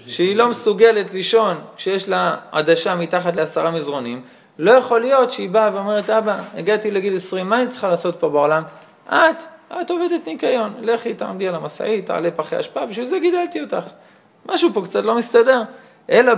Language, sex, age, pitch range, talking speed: Hebrew, male, 20-39, 180-240 Hz, 170 wpm